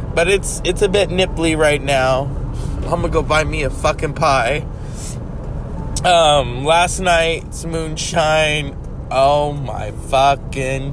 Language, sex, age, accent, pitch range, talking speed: English, male, 20-39, American, 130-165 Hz, 125 wpm